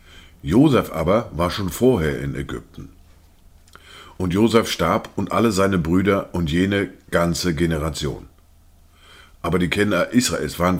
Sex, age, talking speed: male, 50-69, 130 wpm